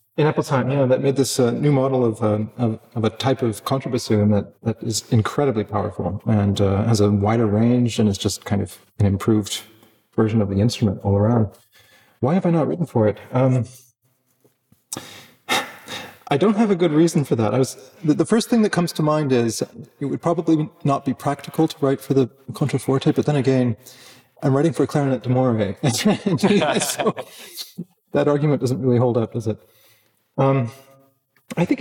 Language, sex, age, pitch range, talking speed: English, male, 30-49, 110-140 Hz, 190 wpm